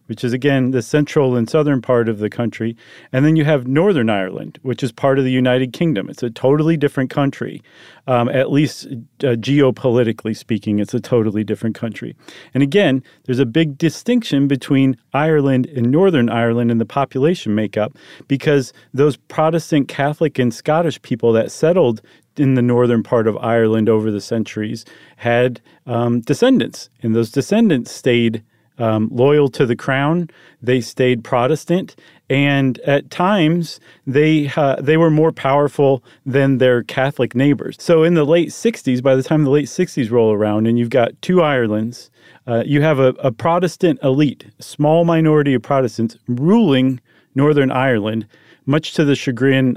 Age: 40-59